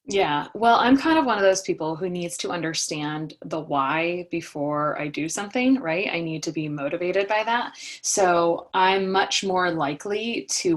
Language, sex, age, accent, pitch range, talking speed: English, female, 20-39, American, 170-235 Hz, 185 wpm